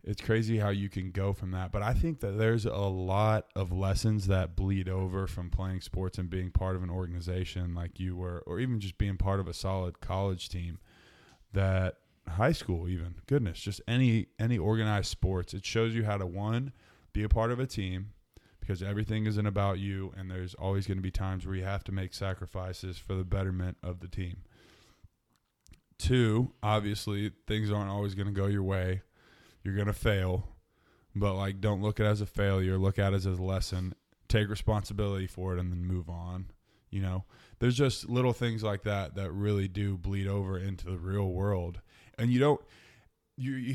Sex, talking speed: male, 200 wpm